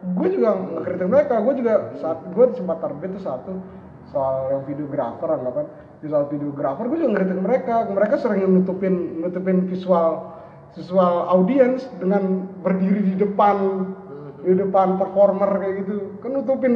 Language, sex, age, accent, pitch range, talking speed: Indonesian, male, 30-49, native, 140-195 Hz, 135 wpm